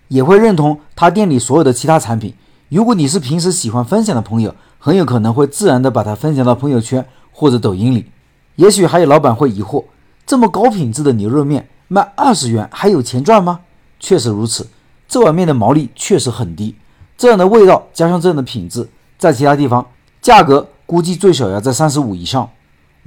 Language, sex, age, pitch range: Chinese, male, 50-69, 115-180 Hz